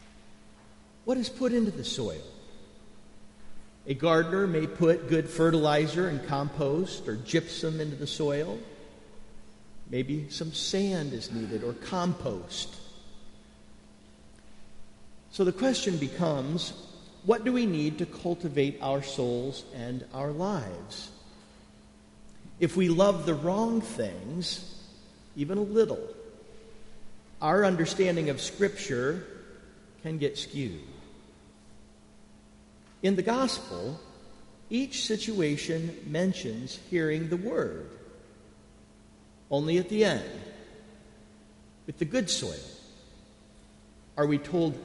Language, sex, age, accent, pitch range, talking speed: English, male, 50-69, American, 140-190 Hz, 105 wpm